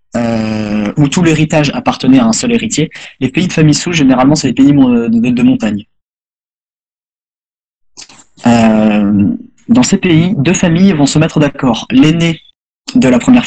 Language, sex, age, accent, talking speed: French, male, 20-39, French, 160 wpm